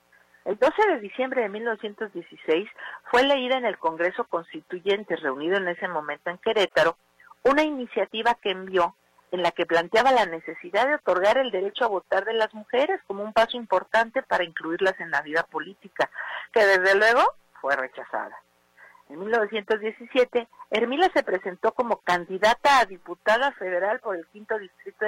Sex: female